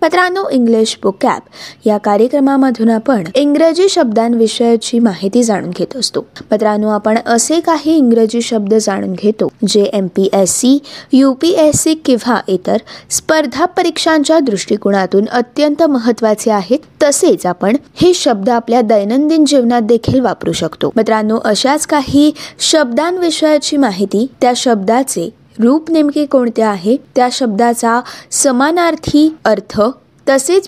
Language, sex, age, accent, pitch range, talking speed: Marathi, female, 20-39, native, 220-310 Hz, 110 wpm